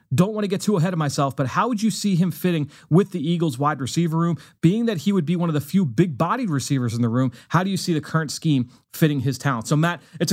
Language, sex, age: English, male, 30-49